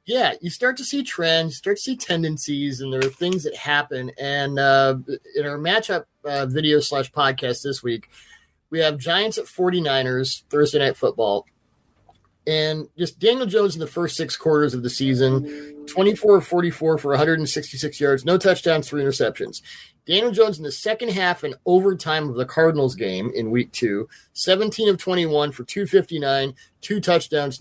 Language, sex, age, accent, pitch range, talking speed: English, male, 30-49, American, 135-180 Hz, 170 wpm